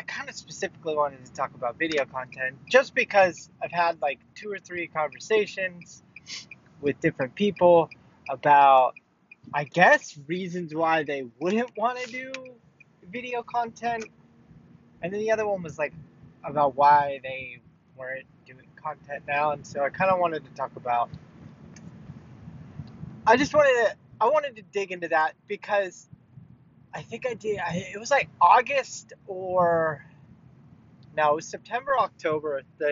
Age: 20-39